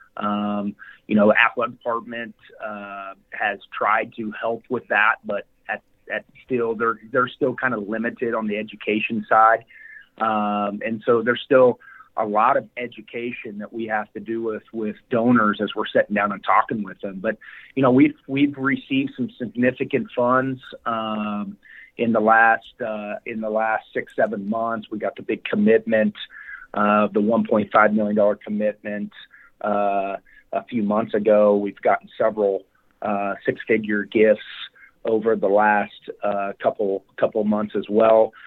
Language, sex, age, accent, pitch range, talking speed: English, male, 30-49, American, 105-115 Hz, 160 wpm